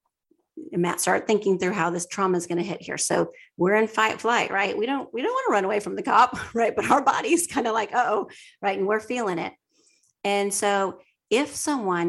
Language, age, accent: English, 40-59, American